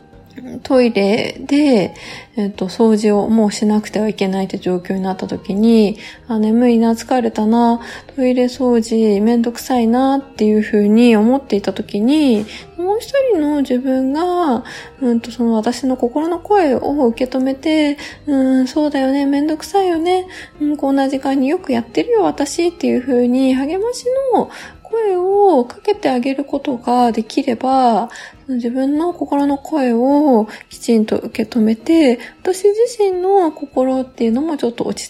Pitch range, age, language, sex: 230-315 Hz, 20-39, Japanese, female